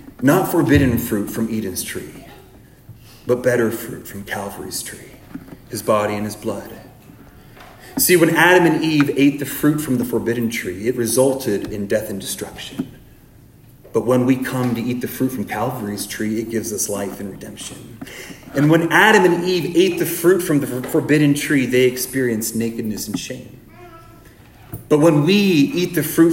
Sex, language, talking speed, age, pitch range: male, English, 170 wpm, 30-49, 110-135 Hz